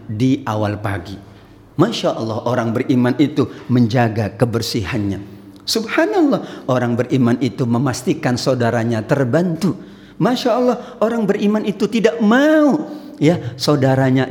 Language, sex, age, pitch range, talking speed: Indonesian, male, 50-69, 115-180 Hz, 110 wpm